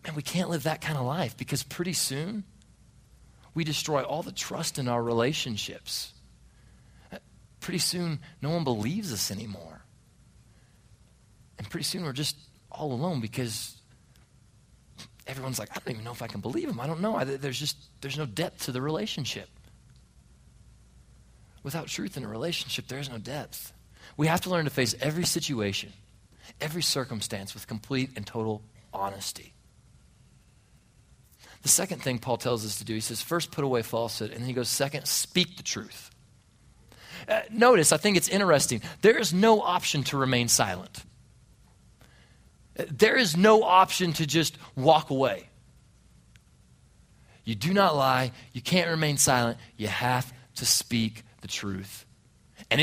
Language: English